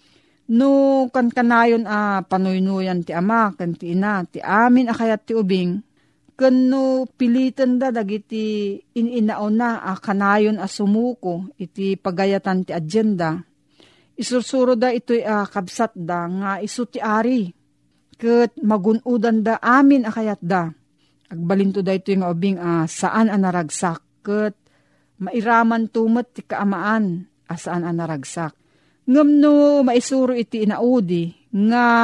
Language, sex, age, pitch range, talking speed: Filipino, female, 40-59, 185-235 Hz, 125 wpm